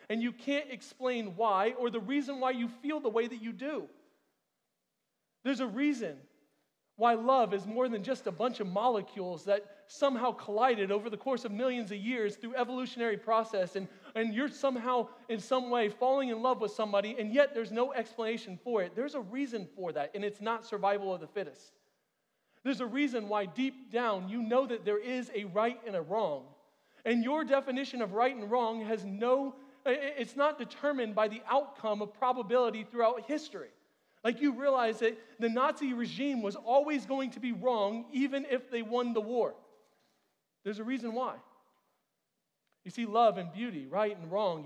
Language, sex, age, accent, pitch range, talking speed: English, male, 40-59, American, 215-260 Hz, 185 wpm